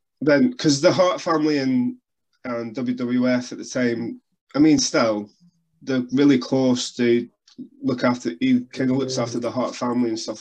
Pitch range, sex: 115-155 Hz, male